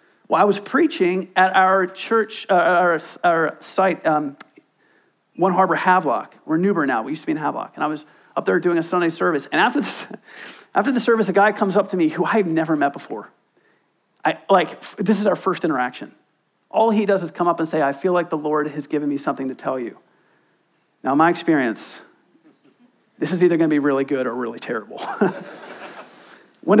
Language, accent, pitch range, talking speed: English, American, 155-200 Hz, 215 wpm